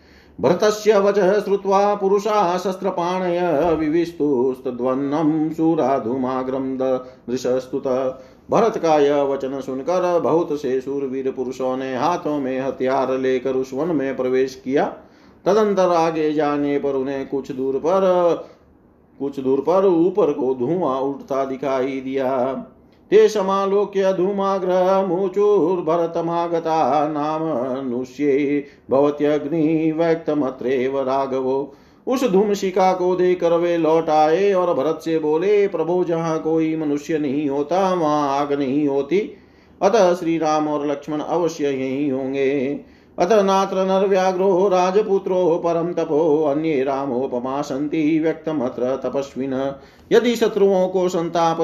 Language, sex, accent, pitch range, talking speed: Hindi, male, native, 135-180 Hz, 65 wpm